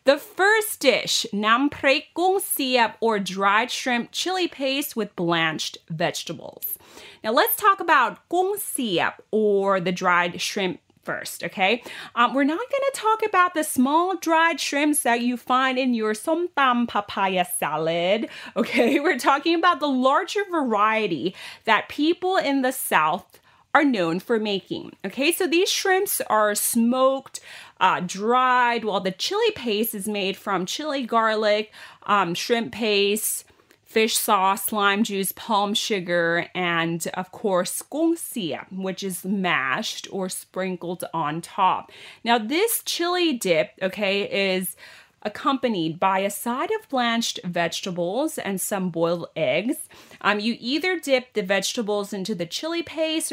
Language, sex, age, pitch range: Thai, female, 30-49, 190-285 Hz